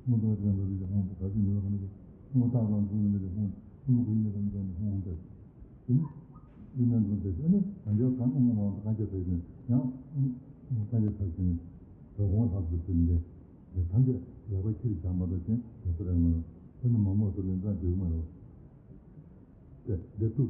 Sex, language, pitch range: male, Italian, 90-120 Hz